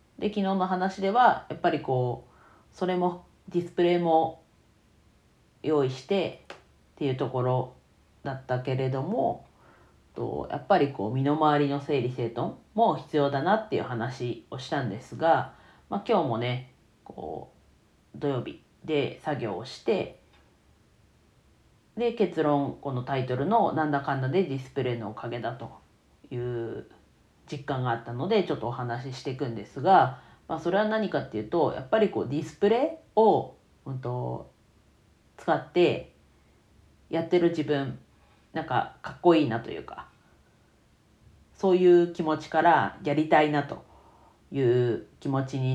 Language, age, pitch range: Japanese, 40-59, 125-180 Hz